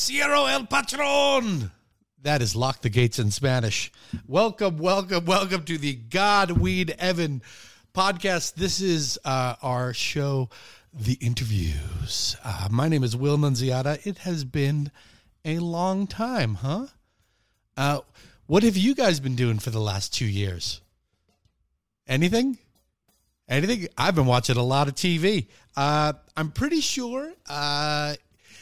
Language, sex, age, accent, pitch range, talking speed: English, male, 30-49, American, 115-175 Hz, 135 wpm